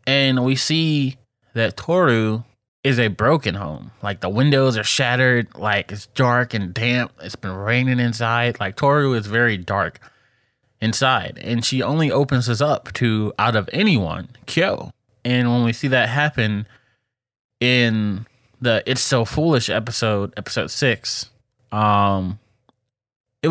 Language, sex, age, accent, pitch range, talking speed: English, male, 20-39, American, 105-130 Hz, 140 wpm